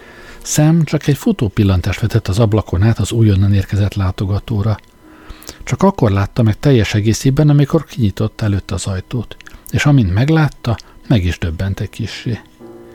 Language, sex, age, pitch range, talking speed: Hungarian, male, 60-79, 100-125 Hz, 140 wpm